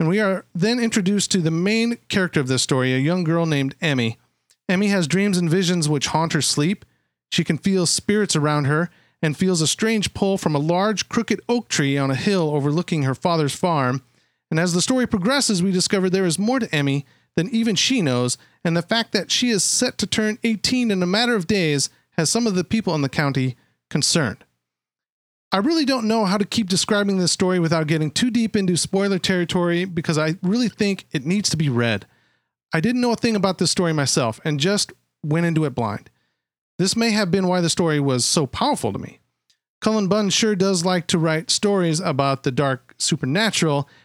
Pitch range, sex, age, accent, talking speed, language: 155-210 Hz, male, 40-59, American, 210 wpm, English